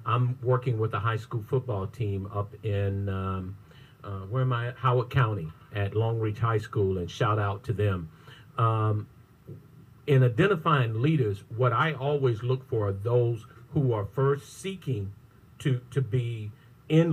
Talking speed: 160 wpm